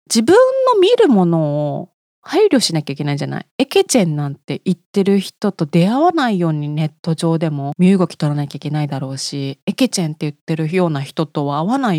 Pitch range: 155-250 Hz